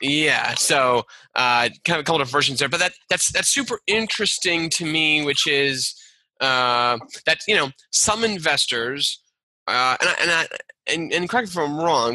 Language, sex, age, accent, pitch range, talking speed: English, male, 20-39, American, 125-160 Hz, 185 wpm